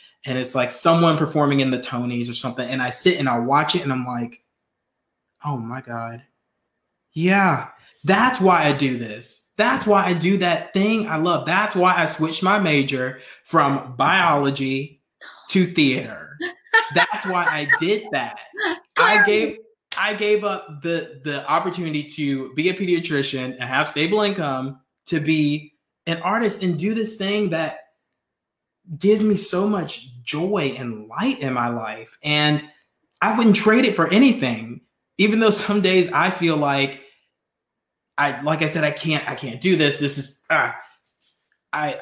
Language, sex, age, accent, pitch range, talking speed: English, male, 20-39, American, 130-185 Hz, 165 wpm